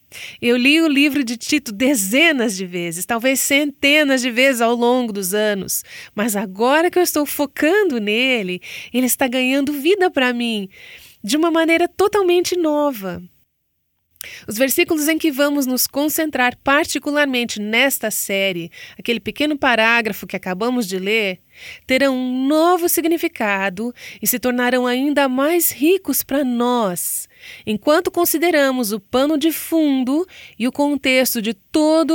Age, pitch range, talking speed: 30-49, 220-295 Hz, 140 wpm